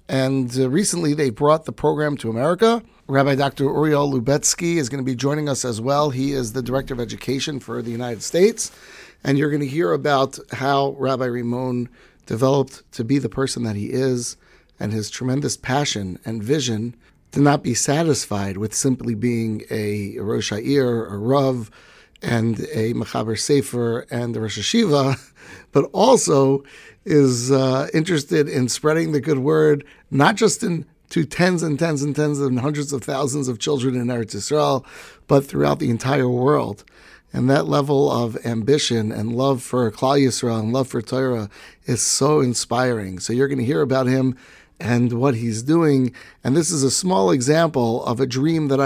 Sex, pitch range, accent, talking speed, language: male, 120-145 Hz, American, 175 wpm, English